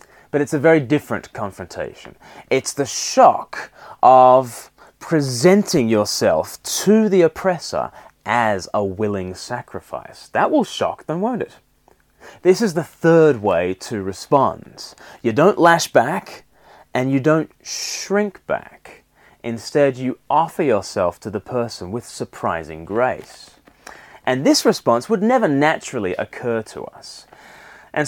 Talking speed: 130 wpm